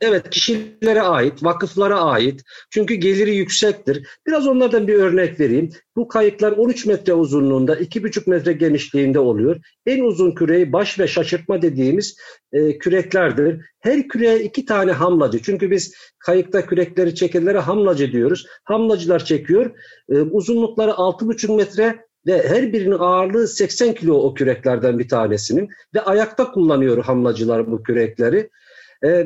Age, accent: 50-69, native